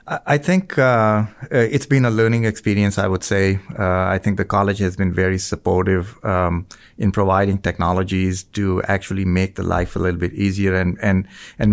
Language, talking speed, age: English, 185 wpm, 30-49